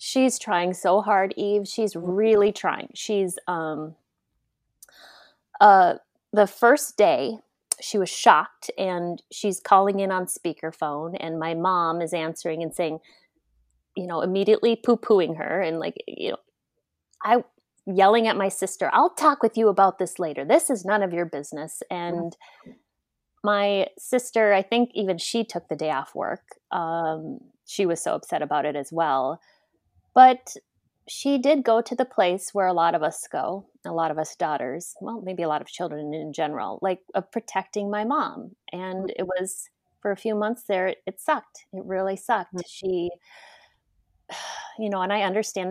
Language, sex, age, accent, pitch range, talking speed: English, female, 30-49, American, 175-215 Hz, 165 wpm